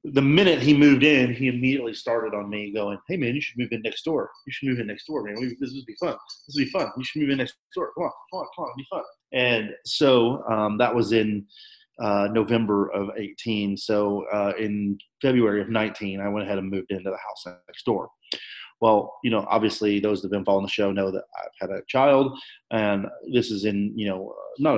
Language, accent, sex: English, American, male